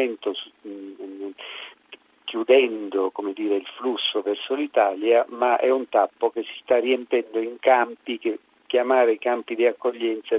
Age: 50-69